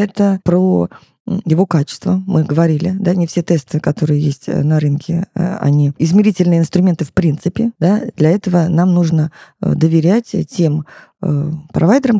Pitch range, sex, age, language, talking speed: 165-210 Hz, female, 20-39, Russian, 125 wpm